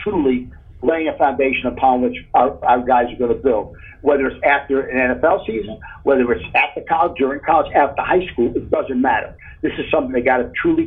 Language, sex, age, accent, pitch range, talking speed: English, male, 50-69, American, 125-155 Hz, 215 wpm